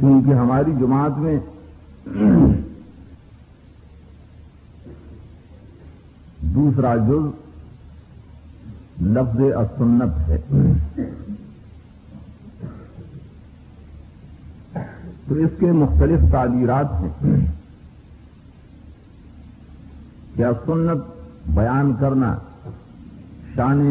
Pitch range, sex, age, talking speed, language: 80-125 Hz, male, 50-69, 50 wpm, Urdu